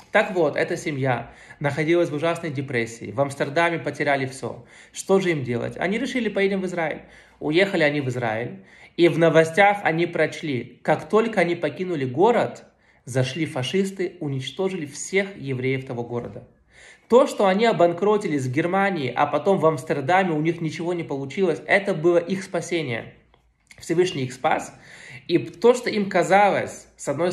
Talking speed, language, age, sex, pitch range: 155 wpm, Russian, 20-39, male, 130-175 Hz